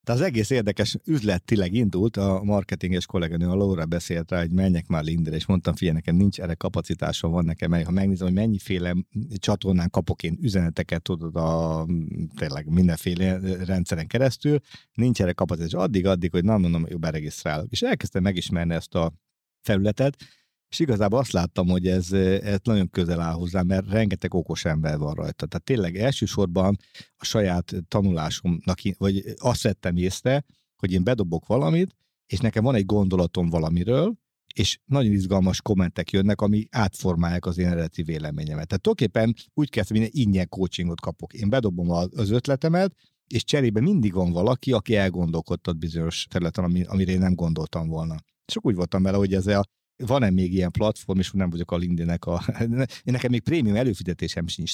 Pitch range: 85-105 Hz